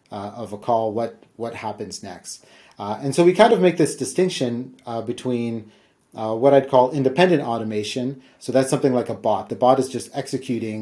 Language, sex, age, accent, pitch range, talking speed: English, male, 30-49, American, 110-135 Hz, 195 wpm